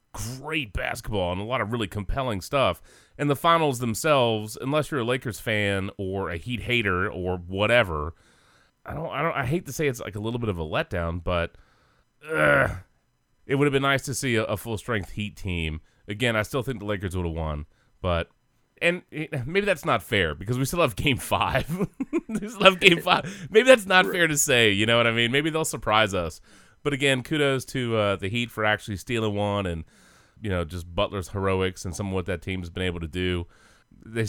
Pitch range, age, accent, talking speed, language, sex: 95-135 Hz, 30-49, American, 220 wpm, English, male